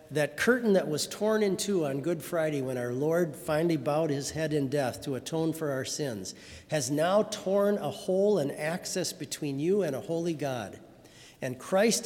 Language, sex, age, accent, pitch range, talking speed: English, male, 50-69, American, 135-180 Hz, 195 wpm